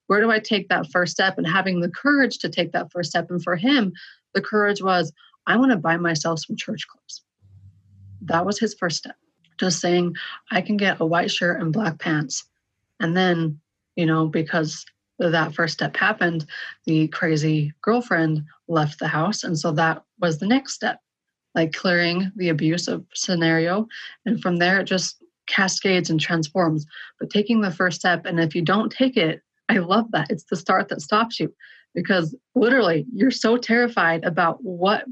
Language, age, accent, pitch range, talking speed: English, 30-49, American, 165-195 Hz, 185 wpm